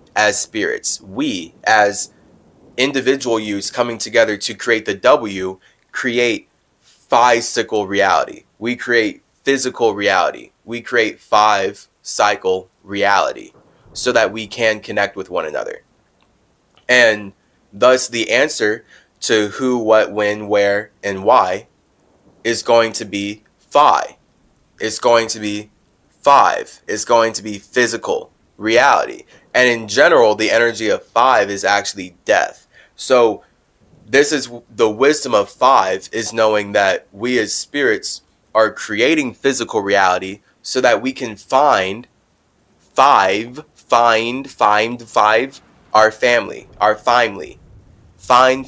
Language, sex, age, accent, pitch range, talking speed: English, male, 20-39, American, 105-125 Hz, 125 wpm